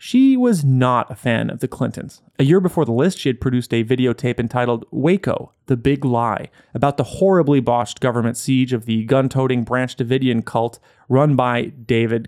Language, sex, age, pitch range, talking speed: English, male, 30-49, 120-165 Hz, 185 wpm